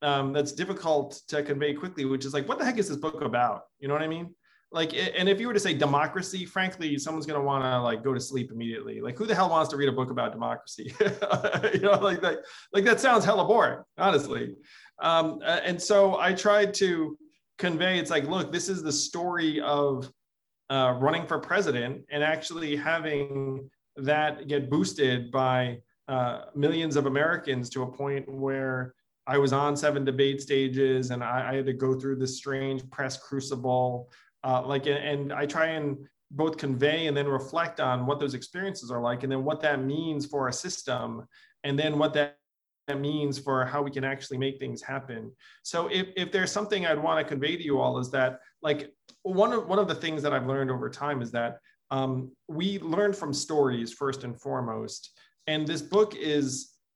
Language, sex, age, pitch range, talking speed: English, male, 30-49, 135-165 Hz, 200 wpm